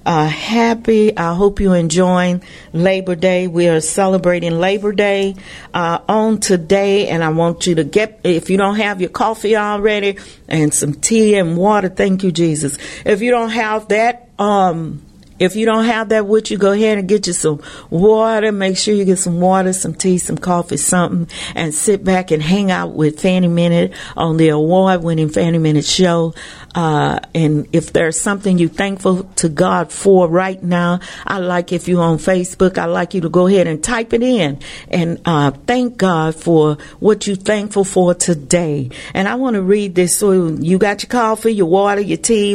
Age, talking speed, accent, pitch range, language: 50-69, 195 wpm, American, 170-200 Hz, English